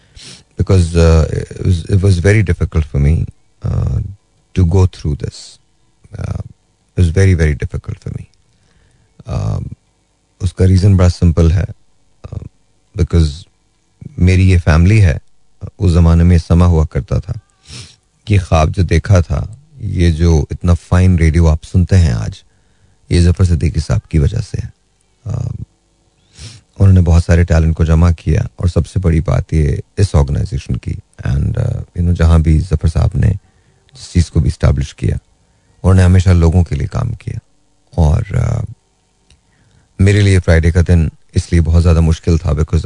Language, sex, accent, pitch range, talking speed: Hindi, male, native, 85-100 Hz, 150 wpm